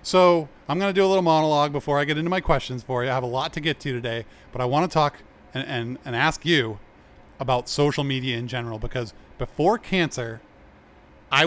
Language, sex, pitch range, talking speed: English, male, 125-165 Hz, 220 wpm